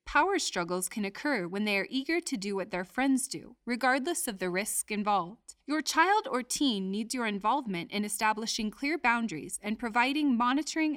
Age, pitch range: 30-49, 200-280 Hz